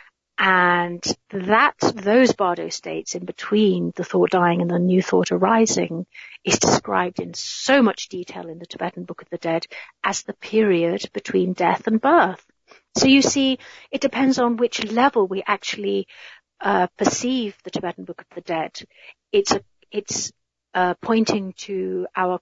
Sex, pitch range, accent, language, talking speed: female, 180-230 Hz, British, English, 160 wpm